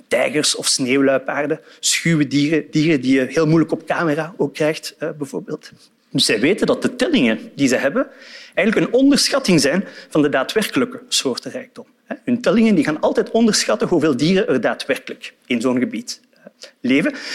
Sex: male